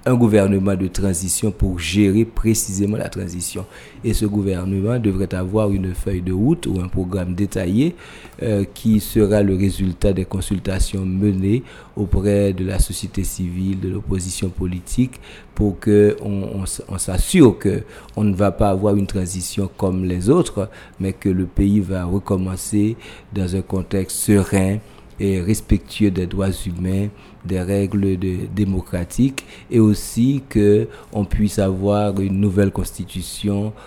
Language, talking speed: French, 145 wpm